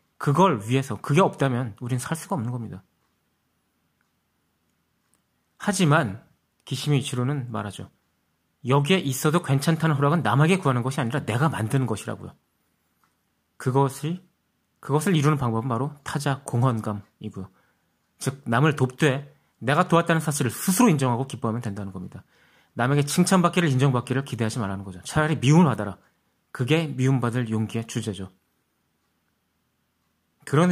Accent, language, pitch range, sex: native, Korean, 110-145 Hz, male